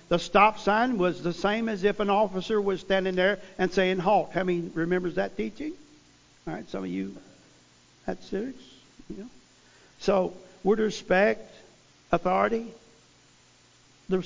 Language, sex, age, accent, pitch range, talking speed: English, male, 60-79, American, 175-245 Hz, 145 wpm